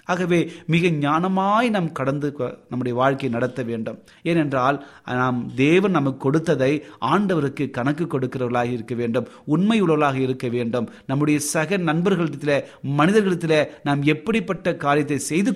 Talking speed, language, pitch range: 110 wpm, Tamil, 135-175 Hz